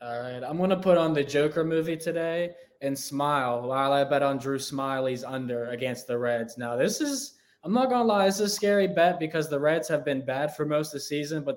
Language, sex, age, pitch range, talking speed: English, male, 20-39, 135-165 Hz, 245 wpm